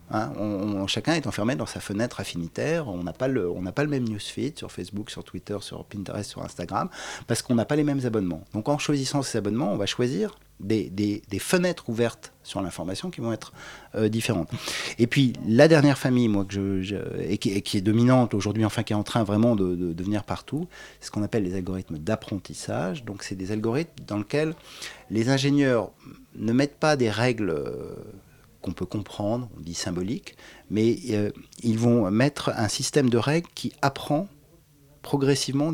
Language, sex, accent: French, male, French